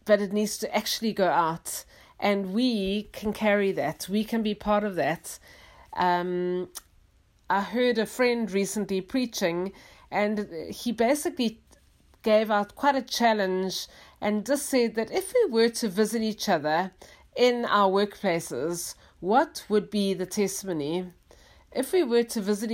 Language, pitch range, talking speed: English, 195-240 Hz, 150 wpm